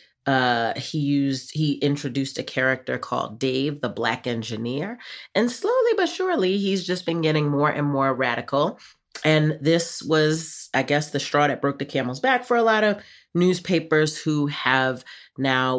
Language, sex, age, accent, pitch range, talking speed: English, female, 30-49, American, 125-160 Hz, 165 wpm